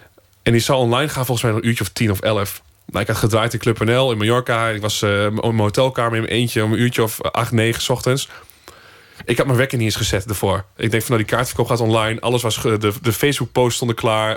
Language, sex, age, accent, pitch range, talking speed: Dutch, male, 20-39, Dutch, 110-125 Hz, 265 wpm